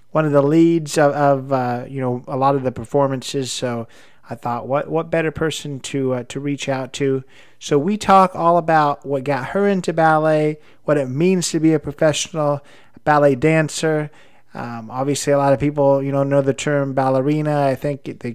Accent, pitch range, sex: American, 130-160 Hz, male